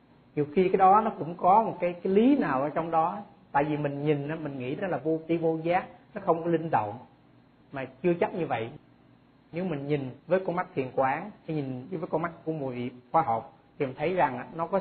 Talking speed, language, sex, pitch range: 245 wpm, Vietnamese, male, 140-185 Hz